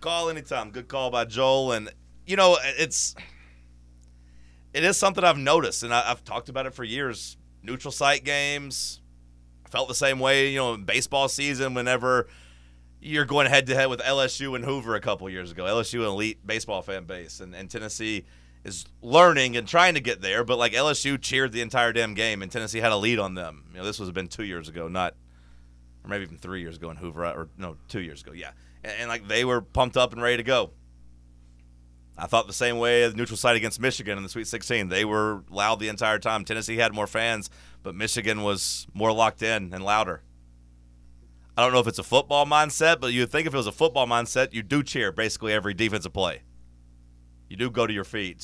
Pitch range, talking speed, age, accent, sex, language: 75-125 Hz, 215 wpm, 30-49, American, male, English